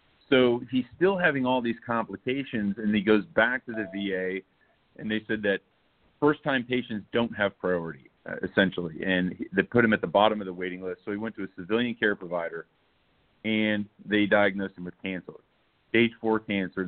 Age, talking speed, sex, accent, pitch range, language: 40-59, 190 wpm, male, American, 95-110 Hz, English